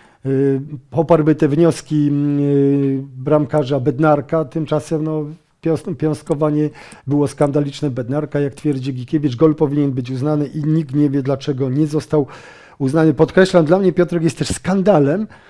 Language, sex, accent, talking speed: Polish, male, native, 130 wpm